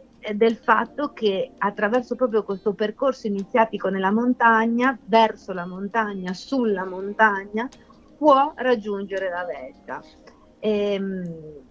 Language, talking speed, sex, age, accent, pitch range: Italian, 105 wpm, female, 30-49, native, 175-210 Hz